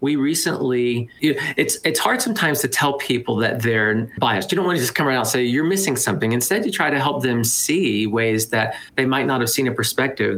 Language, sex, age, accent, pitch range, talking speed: English, male, 40-59, American, 120-145 Hz, 250 wpm